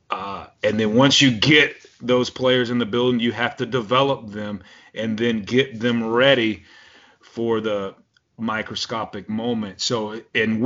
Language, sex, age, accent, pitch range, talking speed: English, male, 30-49, American, 105-130 Hz, 150 wpm